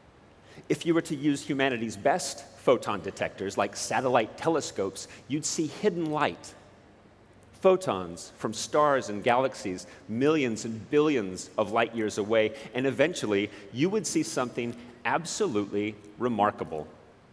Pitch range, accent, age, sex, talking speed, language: 105-150 Hz, American, 40-59, male, 125 wpm, English